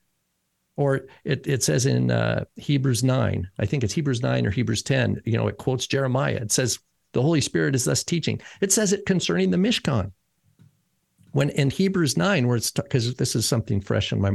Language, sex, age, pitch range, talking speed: English, male, 50-69, 110-165 Hz, 205 wpm